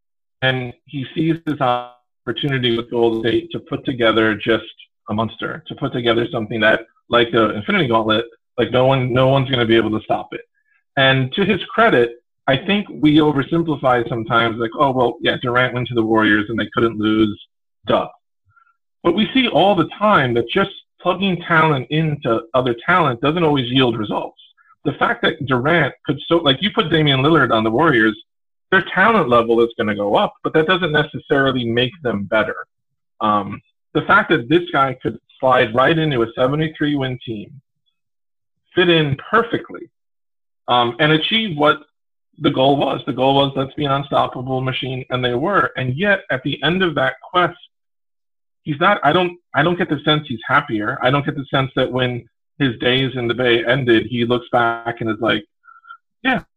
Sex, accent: male, American